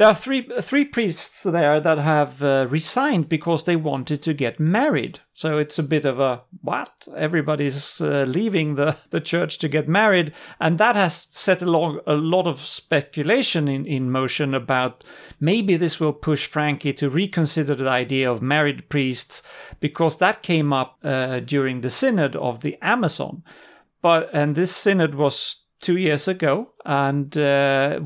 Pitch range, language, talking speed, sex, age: 130-165 Hz, English, 165 wpm, male, 40-59